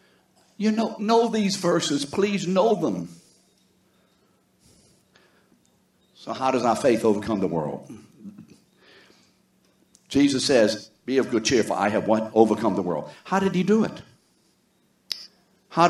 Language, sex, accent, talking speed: English, male, American, 130 wpm